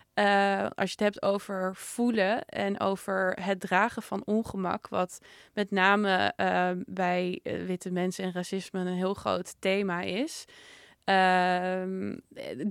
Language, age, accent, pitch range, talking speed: Dutch, 20-39, Dutch, 180-200 Hz, 135 wpm